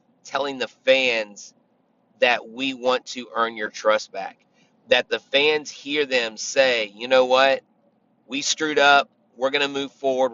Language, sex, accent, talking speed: English, male, American, 165 wpm